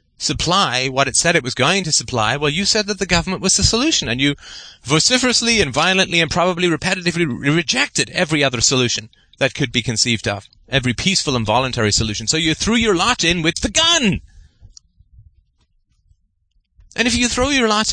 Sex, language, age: male, English, 30-49